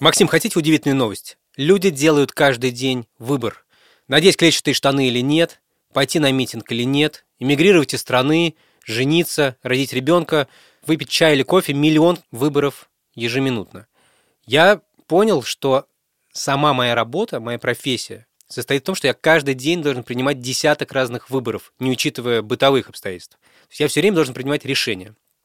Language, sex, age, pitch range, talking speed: Russian, male, 20-39, 125-160 Hz, 150 wpm